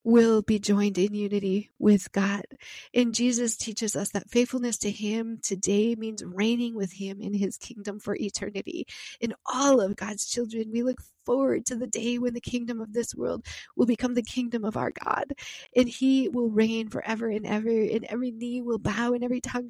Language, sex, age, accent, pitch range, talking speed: English, female, 40-59, American, 215-245 Hz, 200 wpm